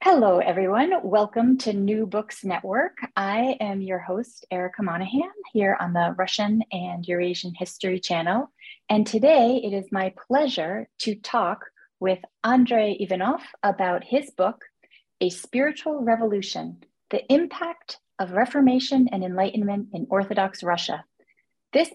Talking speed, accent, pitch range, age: 130 wpm, American, 185-245 Hz, 30-49